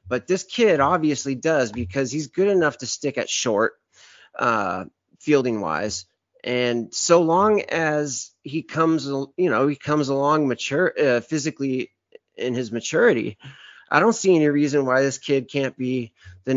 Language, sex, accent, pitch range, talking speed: English, male, American, 125-160 Hz, 160 wpm